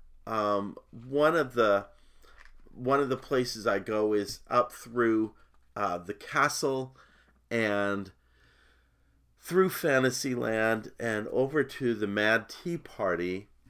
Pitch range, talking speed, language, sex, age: 95-125 Hz, 115 wpm, English, male, 40-59